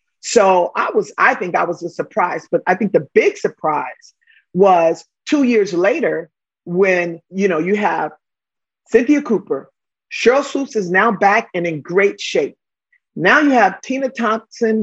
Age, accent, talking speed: 40-59, American, 160 wpm